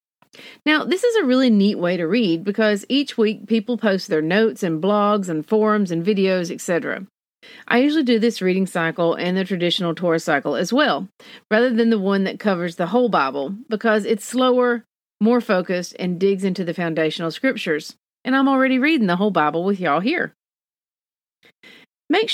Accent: American